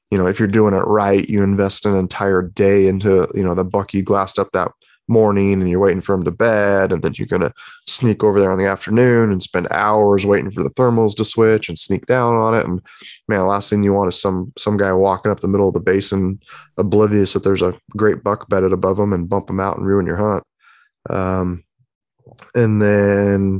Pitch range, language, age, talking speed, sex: 95-110 Hz, English, 20-39, 230 wpm, male